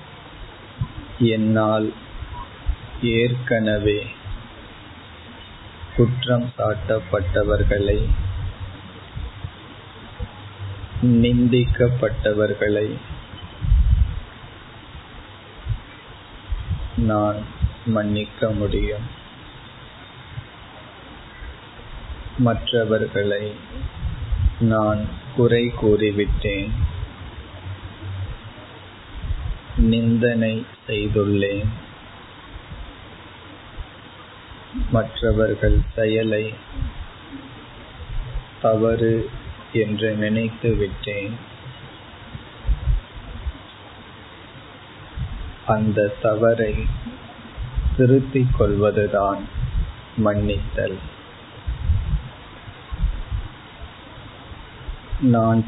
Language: Tamil